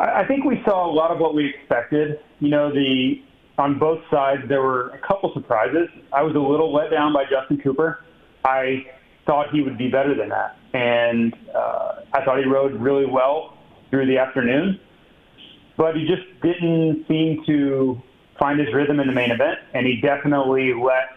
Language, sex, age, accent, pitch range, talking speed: English, male, 30-49, American, 130-150 Hz, 185 wpm